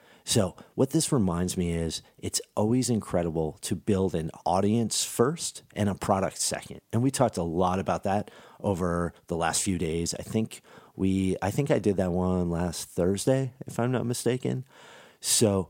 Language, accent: English, American